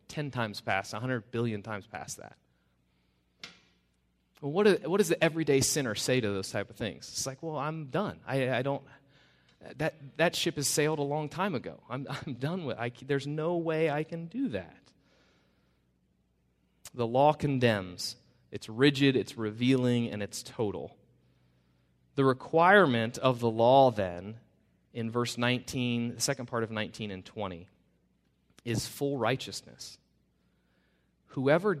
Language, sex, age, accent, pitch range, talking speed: English, male, 30-49, American, 105-140 Hz, 155 wpm